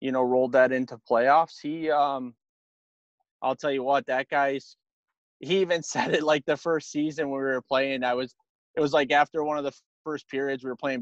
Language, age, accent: English, 20-39, American